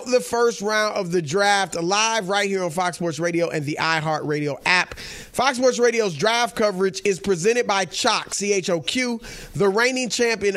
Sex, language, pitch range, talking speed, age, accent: male, English, 175-225 Hz, 170 wpm, 30-49, American